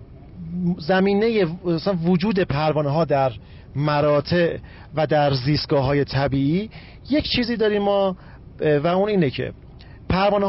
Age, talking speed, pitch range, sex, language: 40-59, 120 wpm, 145-195 Hz, male, Persian